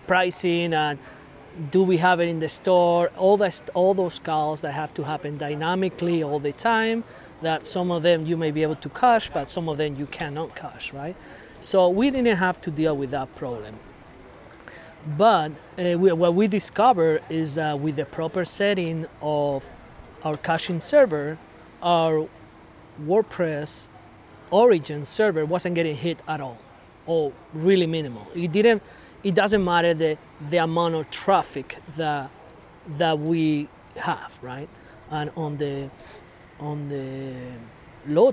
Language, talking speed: English, 155 wpm